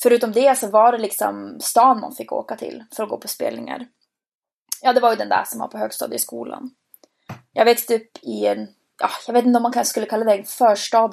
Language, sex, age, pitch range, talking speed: Swedish, female, 20-39, 205-250 Hz, 230 wpm